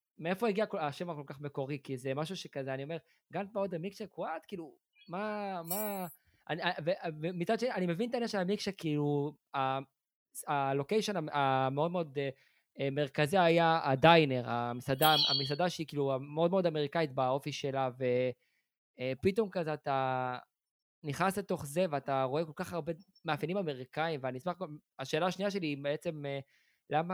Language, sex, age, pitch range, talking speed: Hebrew, male, 20-39, 135-180 Hz, 135 wpm